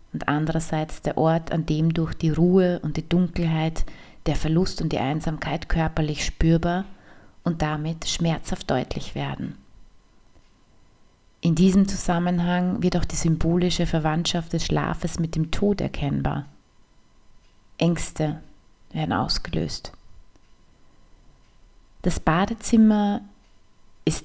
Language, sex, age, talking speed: German, female, 30-49, 110 wpm